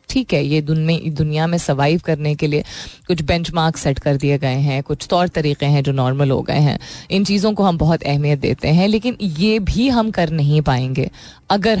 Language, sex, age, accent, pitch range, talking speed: Hindi, female, 20-39, native, 145-185 Hz, 210 wpm